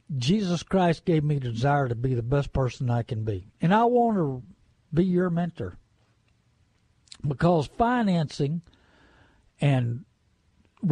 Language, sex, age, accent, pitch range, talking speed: English, male, 60-79, American, 125-185 Hz, 135 wpm